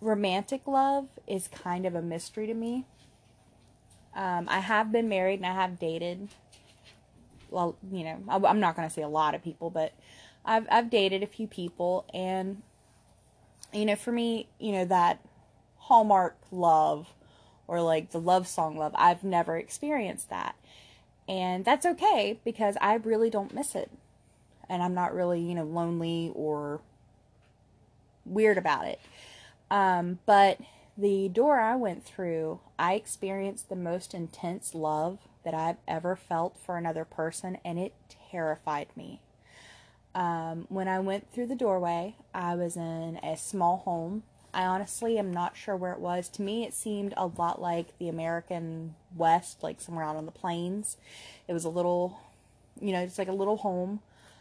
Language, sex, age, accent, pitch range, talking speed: English, female, 20-39, American, 160-200 Hz, 165 wpm